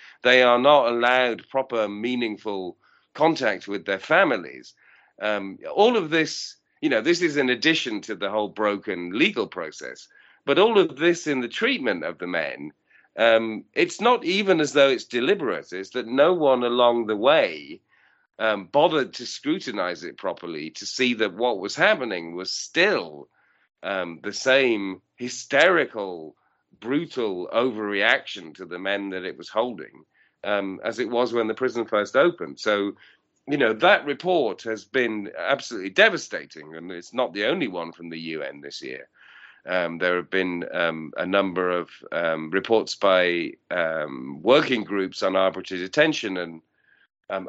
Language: English